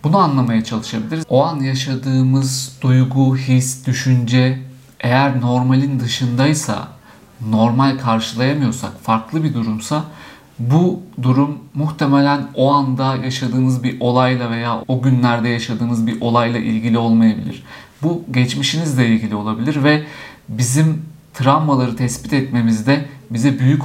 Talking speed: 110 wpm